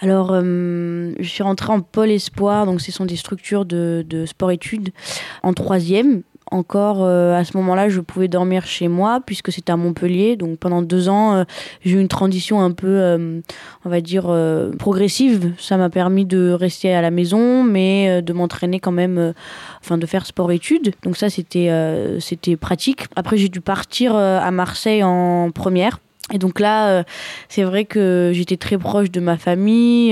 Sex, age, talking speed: female, 20-39, 190 wpm